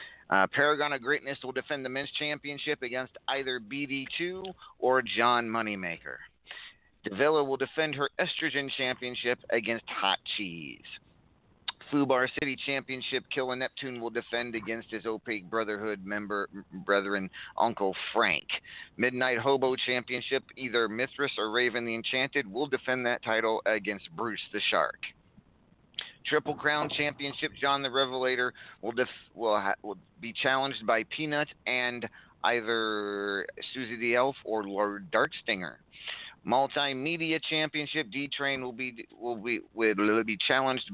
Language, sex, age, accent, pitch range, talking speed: English, male, 40-59, American, 115-140 Hz, 135 wpm